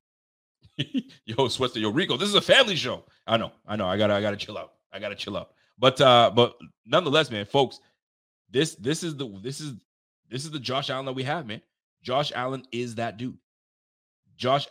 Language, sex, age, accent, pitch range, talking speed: English, male, 30-49, American, 100-130 Hz, 205 wpm